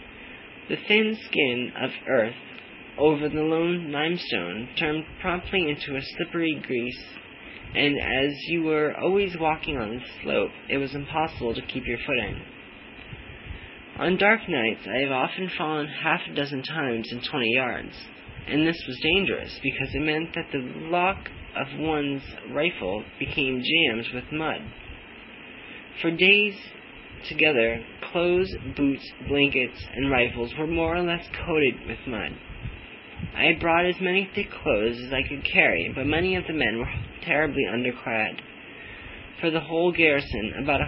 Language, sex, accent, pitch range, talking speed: English, male, American, 125-165 Hz, 150 wpm